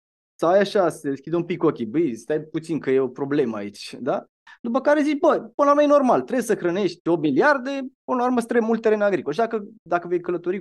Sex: male